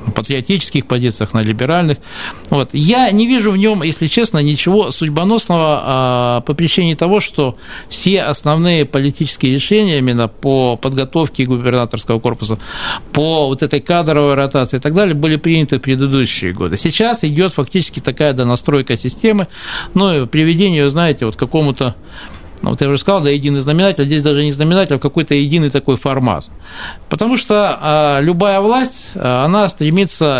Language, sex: Russian, male